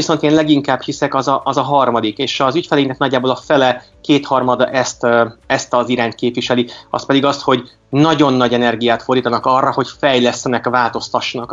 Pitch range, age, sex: 120-140 Hz, 30-49, male